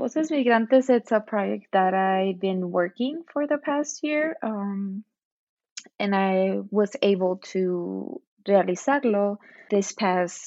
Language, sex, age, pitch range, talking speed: English, female, 20-39, 185-225 Hz, 120 wpm